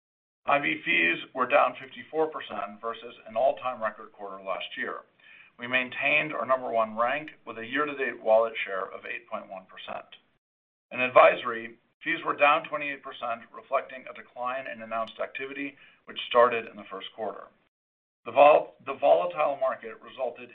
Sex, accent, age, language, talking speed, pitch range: male, American, 50-69, English, 140 wpm, 110-135 Hz